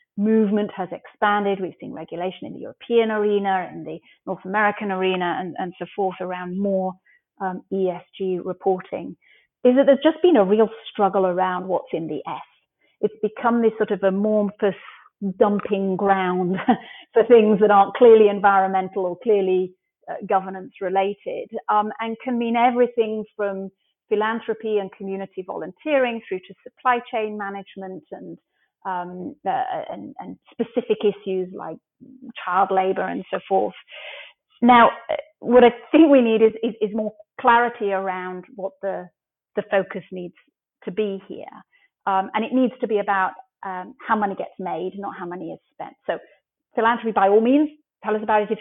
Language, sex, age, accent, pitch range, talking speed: English, female, 40-59, British, 190-230 Hz, 160 wpm